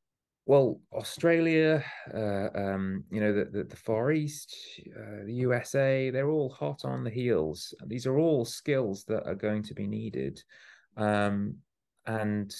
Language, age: English, 30-49